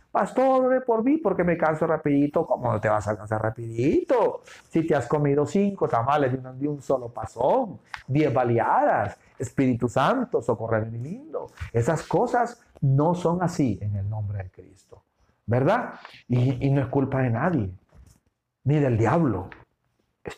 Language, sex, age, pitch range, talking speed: Spanish, male, 50-69, 105-140 Hz, 155 wpm